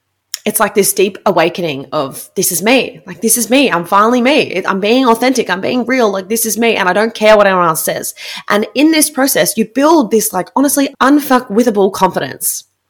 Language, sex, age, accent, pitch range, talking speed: English, female, 20-39, Australian, 195-270 Hz, 210 wpm